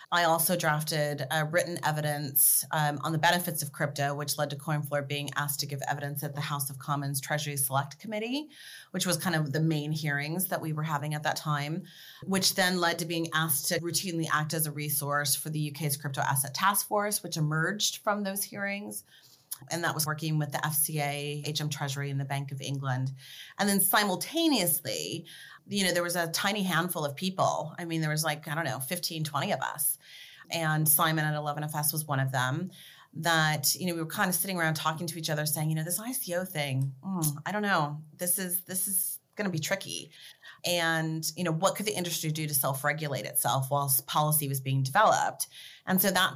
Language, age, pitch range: English, 30-49, 145-175 Hz